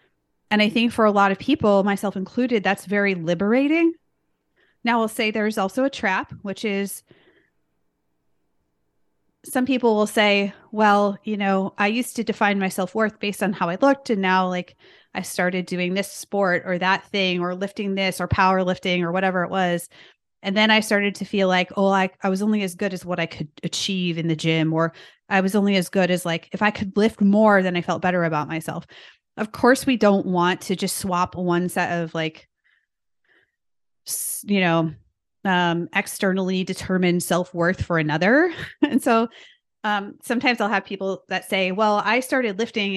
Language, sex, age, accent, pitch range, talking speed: English, female, 30-49, American, 175-210 Hz, 185 wpm